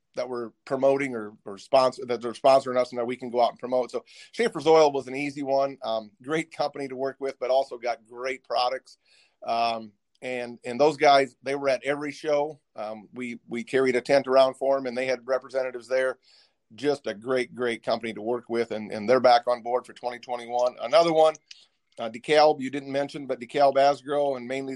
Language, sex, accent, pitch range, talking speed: English, male, American, 125-145 Hz, 215 wpm